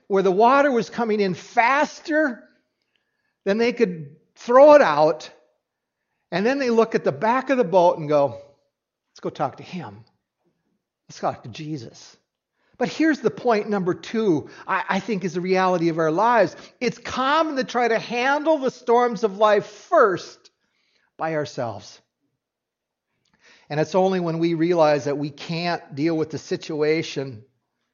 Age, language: 60-79, English